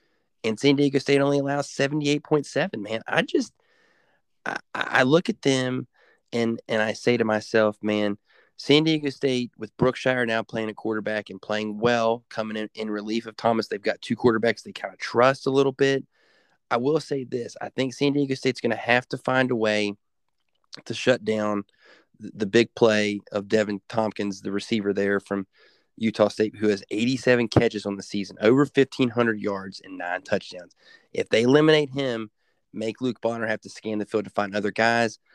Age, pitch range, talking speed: 20-39, 105-130 Hz, 190 wpm